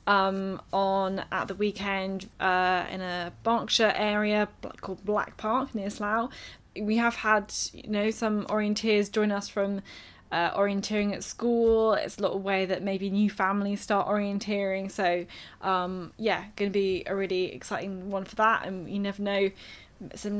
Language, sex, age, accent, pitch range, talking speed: English, female, 10-29, British, 195-220 Hz, 170 wpm